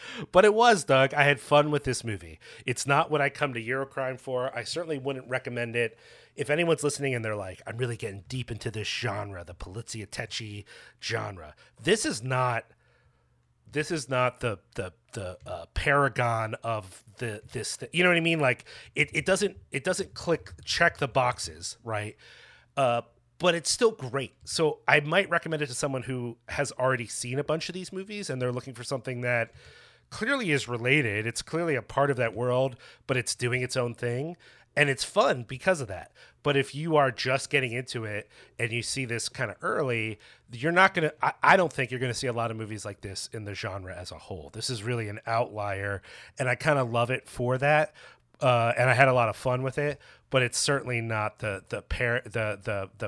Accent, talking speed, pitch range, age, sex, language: American, 215 wpm, 110-145 Hz, 30-49, male, English